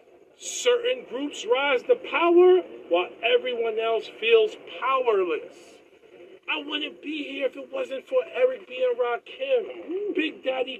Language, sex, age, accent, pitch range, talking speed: English, male, 50-69, American, 310-455 Hz, 135 wpm